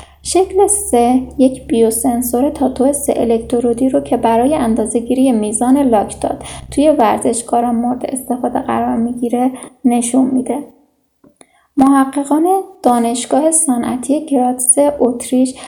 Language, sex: Persian, female